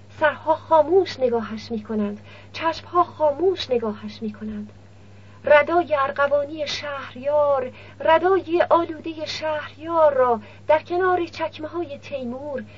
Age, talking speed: 40-59, 90 wpm